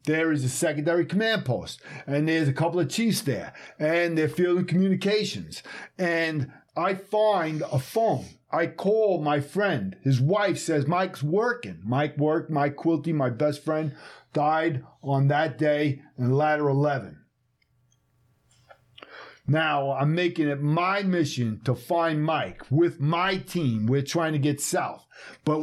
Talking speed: 145 wpm